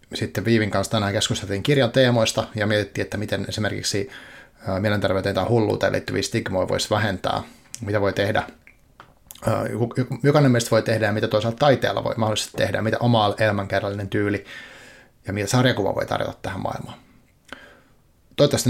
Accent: native